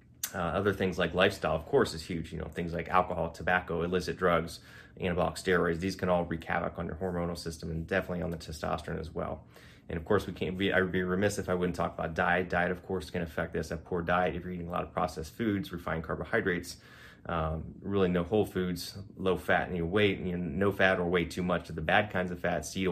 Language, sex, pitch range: English, male, 85-95 Hz